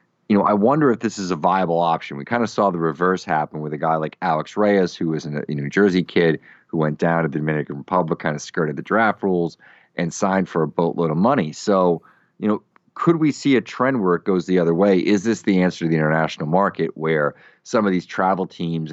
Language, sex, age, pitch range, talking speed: English, male, 30-49, 75-95 Hz, 245 wpm